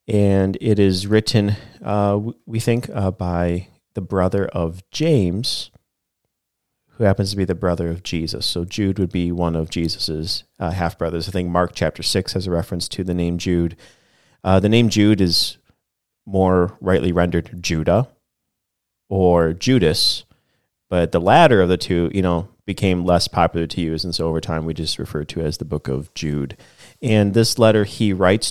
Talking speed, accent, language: 180 wpm, American, English